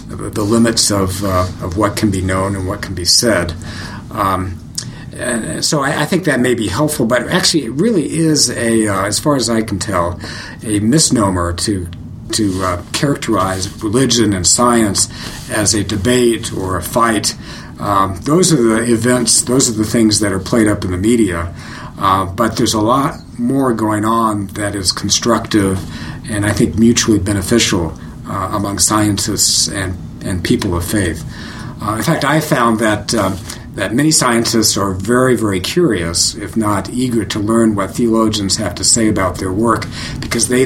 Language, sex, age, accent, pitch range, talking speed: English, male, 50-69, American, 100-120 Hz, 175 wpm